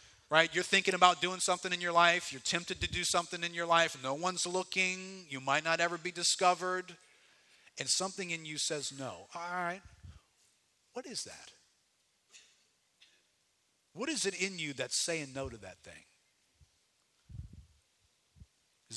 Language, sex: English, male